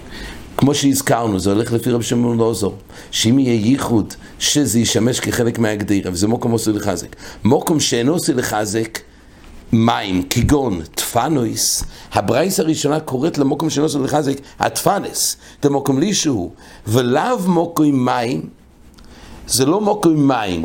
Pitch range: 105-140 Hz